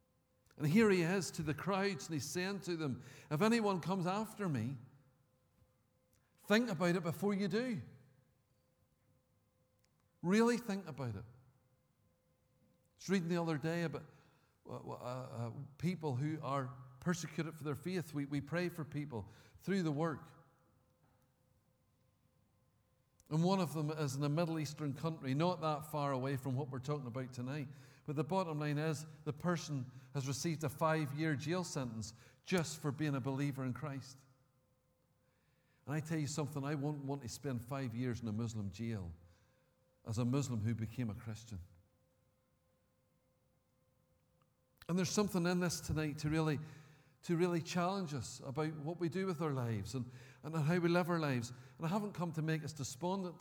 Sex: male